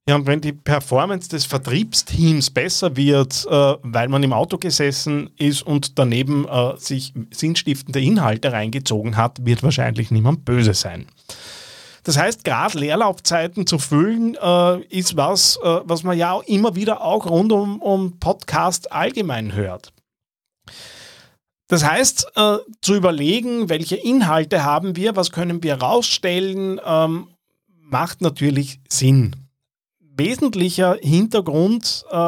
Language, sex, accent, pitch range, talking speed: German, male, Austrian, 135-180 Hz, 130 wpm